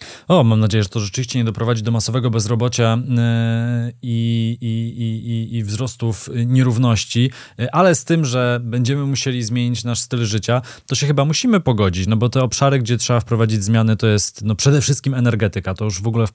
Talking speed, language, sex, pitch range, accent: 175 wpm, Polish, male, 105-125 Hz, native